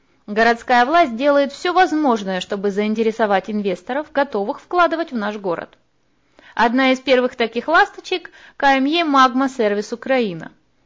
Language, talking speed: Russian, 125 wpm